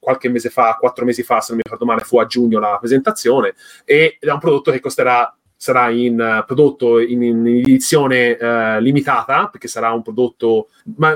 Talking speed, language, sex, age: 195 wpm, Italian, male, 30-49